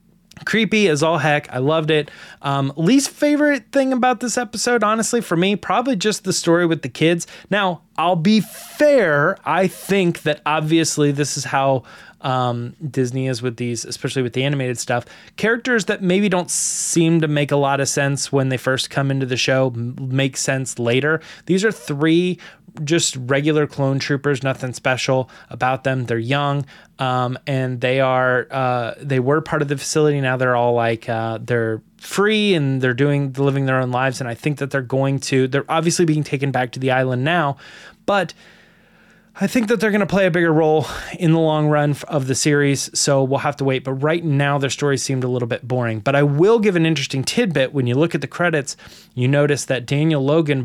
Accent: American